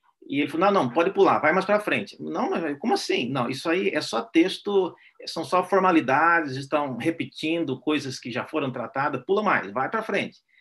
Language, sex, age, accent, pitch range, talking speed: Portuguese, male, 50-69, Brazilian, 140-215 Hz, 205 wpm